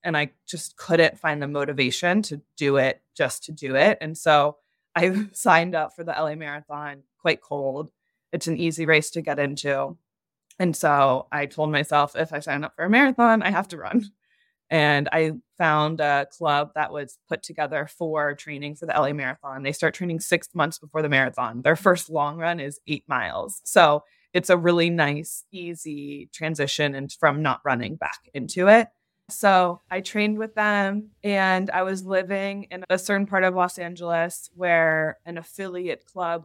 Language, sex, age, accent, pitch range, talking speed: English, female, 20-39, American, 150-180 Hz, 185 wpm